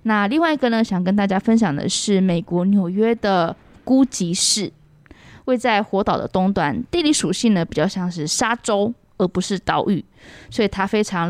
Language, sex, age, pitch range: Chinese, female, 20-39, 180-225 Hz